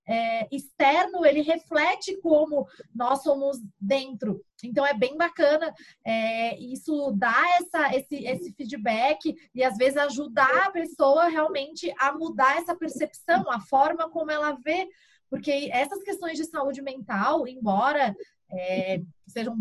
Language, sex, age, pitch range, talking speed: Portuguese, female, 20-39, 235-315 Hz, 120 wpm